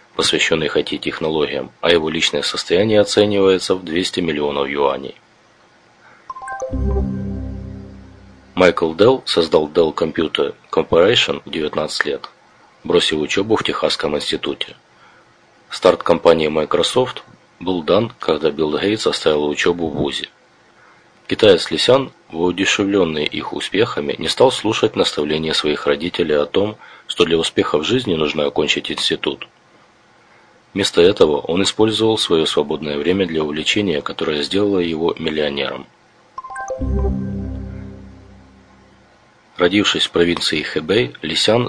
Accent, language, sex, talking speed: native, Russian, male, 110 wpm